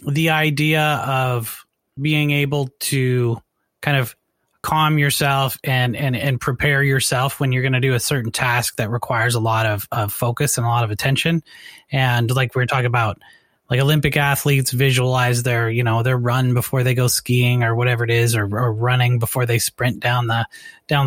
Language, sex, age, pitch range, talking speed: English, male, 20-39, 120-145 Hz, 190 wpm